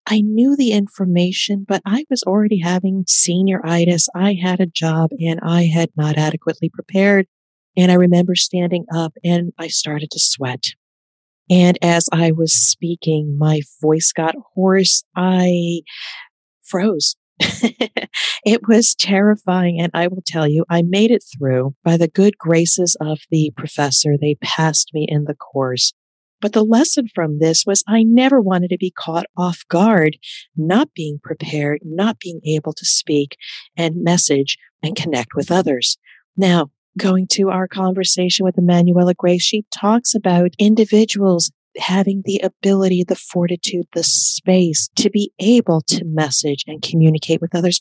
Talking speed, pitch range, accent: 155 wpm, 160-200 Hz, American